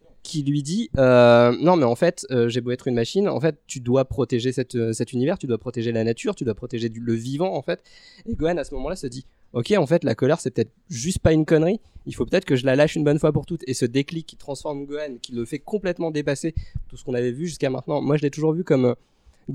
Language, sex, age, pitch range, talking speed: French, male, 20-39, 130-160 Hz, 280 wpm